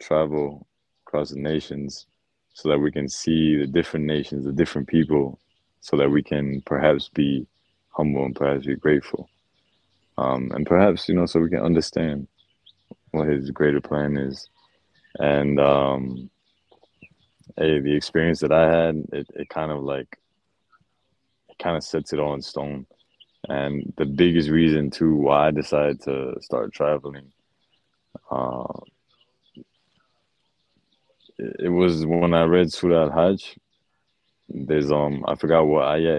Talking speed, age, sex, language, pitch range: 145 wpm, 20-39, male, English, 70-80 Hz